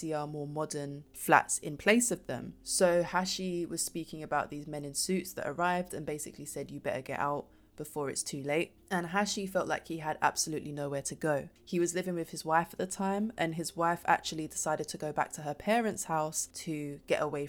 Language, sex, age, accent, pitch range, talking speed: English, female, 20-39, British, 145-170 Hz, 220 wpm